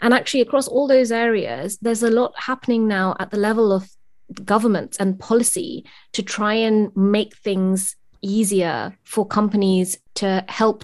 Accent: British